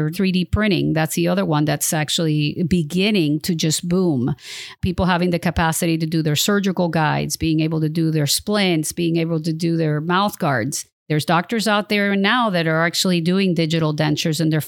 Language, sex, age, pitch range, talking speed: English, female, 50-69, 160-190 Hz, 190 wpm